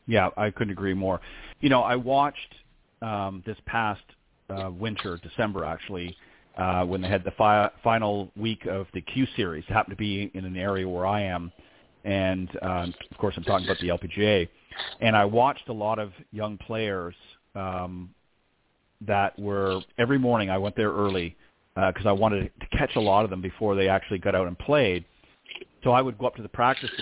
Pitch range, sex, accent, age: 95-120 Hz, male, American, 40-59